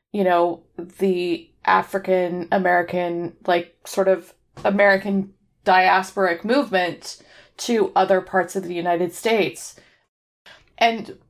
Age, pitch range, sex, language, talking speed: 20-39, 180-220 Hz, female, English, 95 wpm